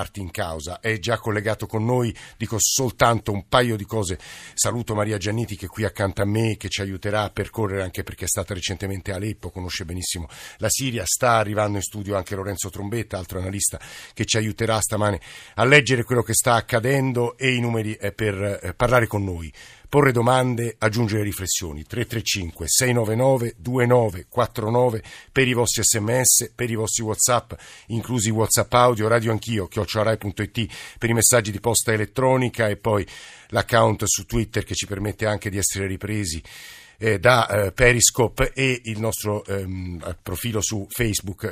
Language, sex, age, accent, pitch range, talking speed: Italian, male, 50-69, native, 100-115 Hz, 155 wpm